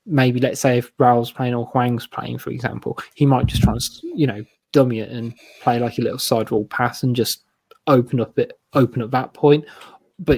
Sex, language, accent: male, English, British